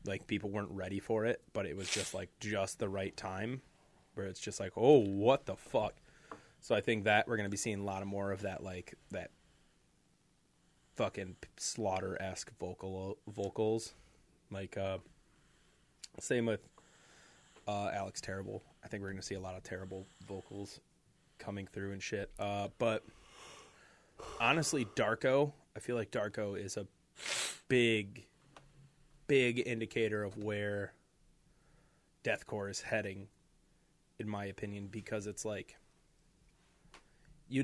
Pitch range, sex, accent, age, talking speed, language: 100-120 Hz, male, American, 20-39, 145 wpm, English